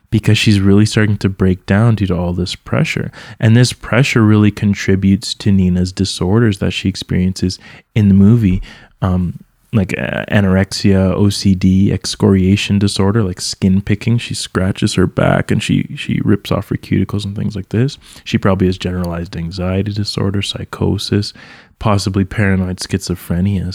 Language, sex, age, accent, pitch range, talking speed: English, male, 20-39, American, 95-110 Hz, 155 wpm